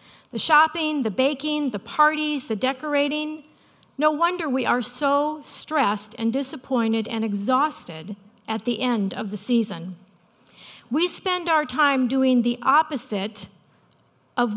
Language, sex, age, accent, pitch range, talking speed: English, female, 40-59, American, 230-290 Hz, 130 wpm